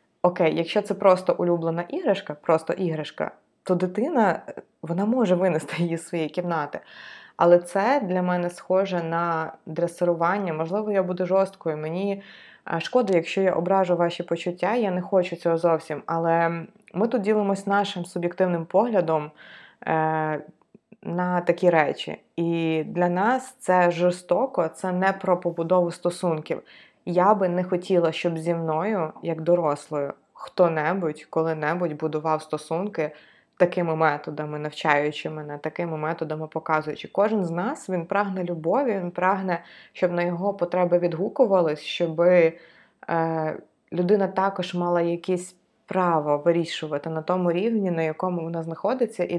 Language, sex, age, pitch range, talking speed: Ukrainian, female, 20-39, 165-185 Hz, 130 wpm